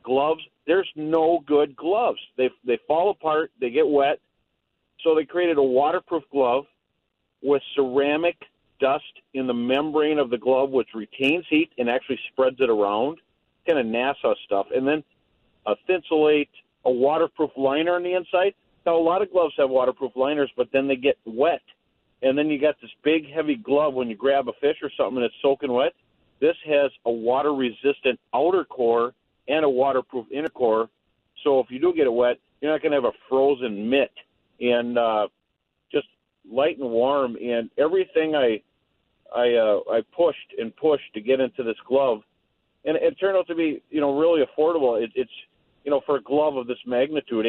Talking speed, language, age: 190 wpm, English, 50-69